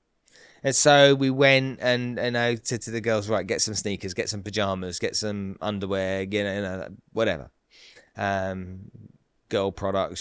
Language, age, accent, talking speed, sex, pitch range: English, 20-39, British, 180 wpm, male, 100-135 Hz